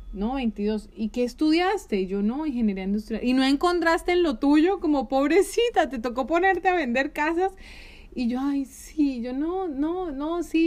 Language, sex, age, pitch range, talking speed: Spanish, female, 30-49, 215-285 Hz, 180 wpm